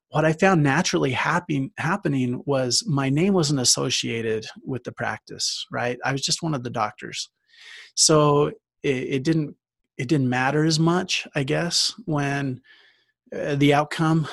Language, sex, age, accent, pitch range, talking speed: English, male, 30-49, American, 130-155 Hz, 155 wpm